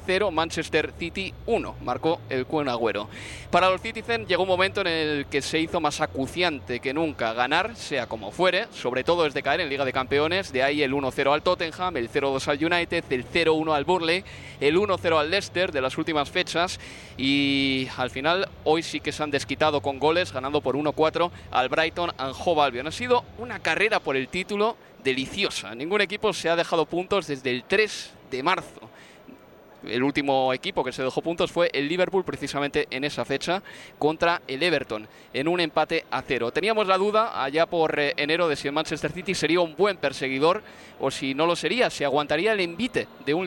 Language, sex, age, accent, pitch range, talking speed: Spanish, male, 20-39, Spanish, 140-175 Hz, 195 wpm